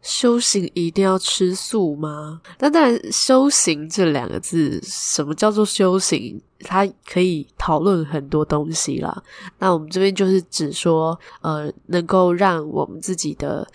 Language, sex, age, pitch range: Chinese, female, 10-29, 155-190 Hz